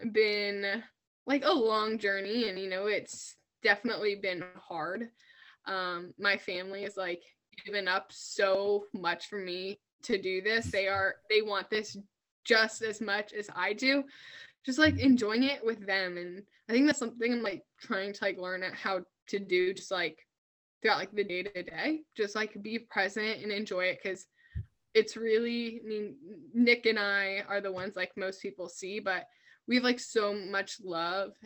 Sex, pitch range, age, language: female, 190-220 Hz, 10-29, English